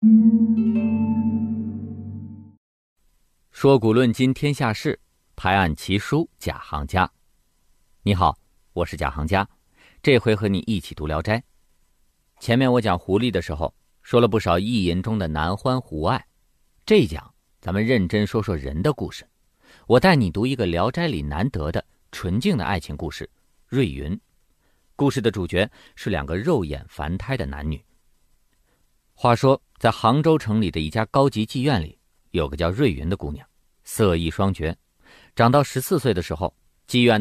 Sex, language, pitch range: male, Chinese, 80-120 Hz